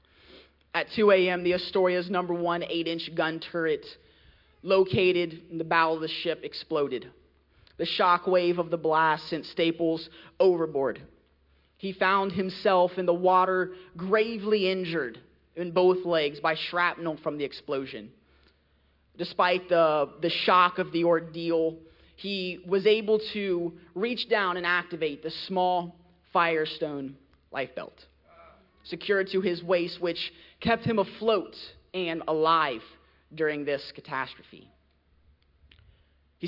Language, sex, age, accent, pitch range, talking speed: English, male, 30-49, American, 160-185 Hz, 125 wpm